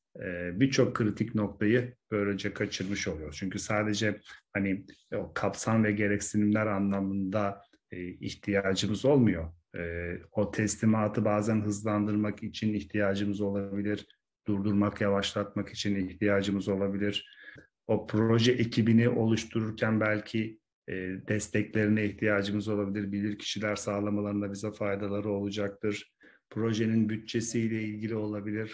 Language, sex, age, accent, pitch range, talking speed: Turkish, male, 40-59, native, 100-110 Hz, 95 wpm